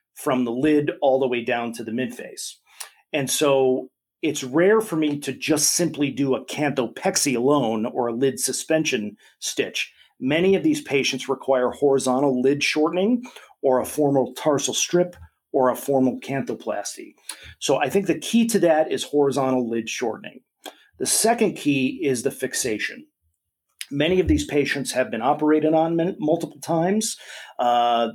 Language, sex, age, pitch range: English, male, 40-59, 125-160 Hz